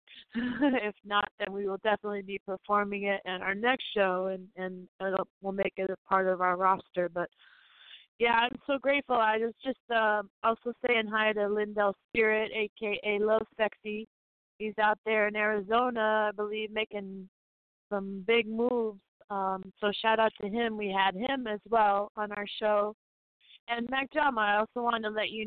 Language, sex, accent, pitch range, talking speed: English, female, American, 195-220 Hz, 175 wpm